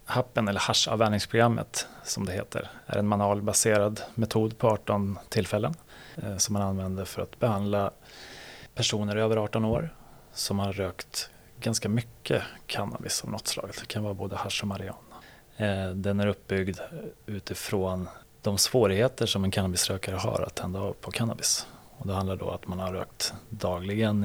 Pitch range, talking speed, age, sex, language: 95-110 Hz, 155 wpm, 30-49, male, Swedish